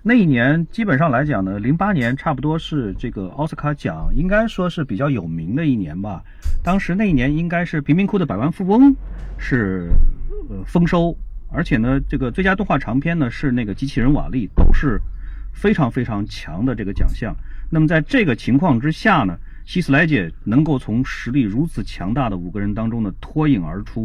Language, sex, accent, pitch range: Chinese, male, native, 100-160 Hz